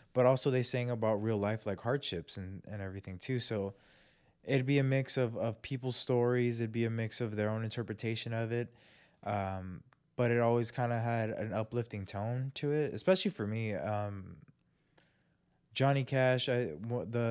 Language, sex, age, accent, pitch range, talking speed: English, male, 20-39, American, 100-120 Hz, 180 wpm